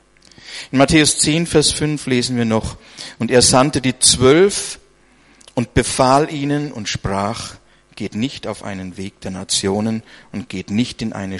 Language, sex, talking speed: German, male, 160 wpm